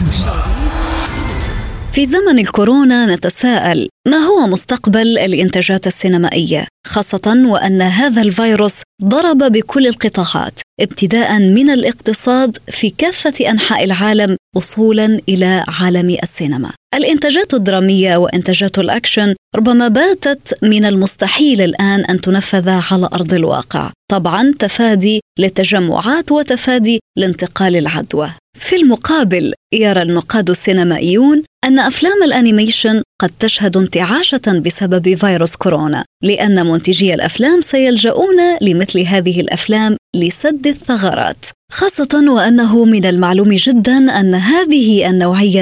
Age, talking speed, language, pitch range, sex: 20-39, 105 wpm, Arabic, 185-255 Hz, female